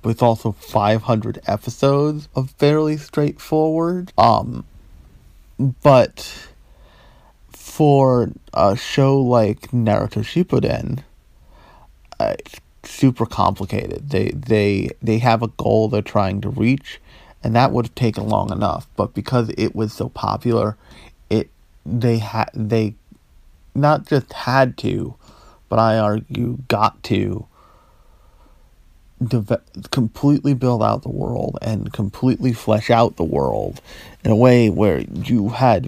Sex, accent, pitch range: male, American, 100-125 Hz